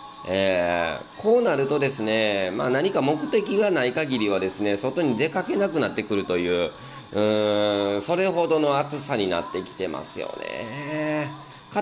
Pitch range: 100-150 Hz